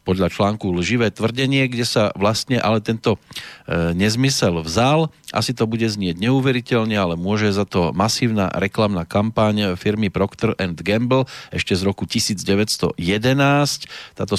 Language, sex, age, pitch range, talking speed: Slovak, male, 40-59, 95-115 Hz, 135 wpm